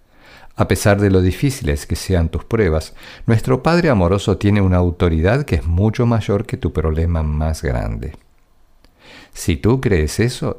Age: 50-69